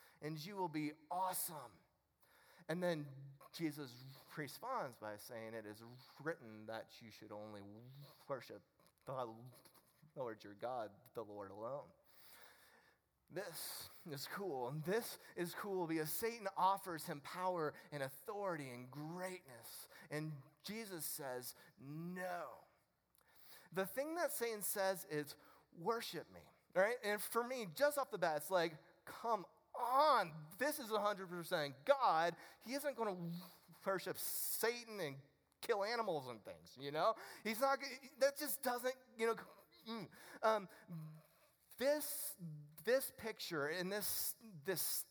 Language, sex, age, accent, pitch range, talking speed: English, male, 30-49, American, 150-220 Hz, 130 wpm